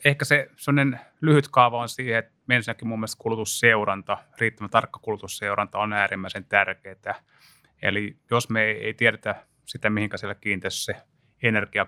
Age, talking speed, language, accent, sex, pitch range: 30-49, 130 wpm, Finnish, native, male, 100-120 Hz